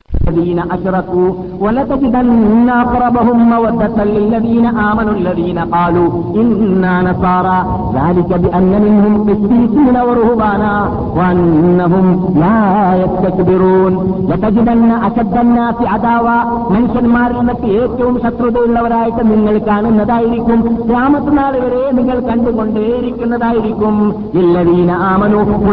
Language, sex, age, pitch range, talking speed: Malayalam, male, 50-69, 190-240 Hz, 90 wpm